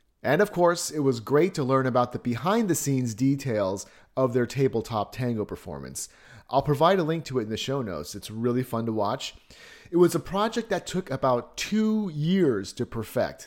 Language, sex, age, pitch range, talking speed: English, male, 30-49, 110-160 Hz, 195 wpm